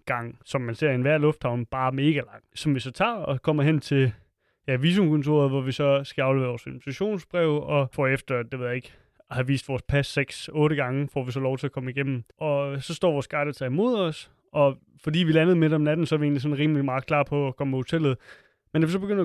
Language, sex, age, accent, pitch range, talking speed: Danish, male, 30-49, native, 130-160 Hz, 250 wpm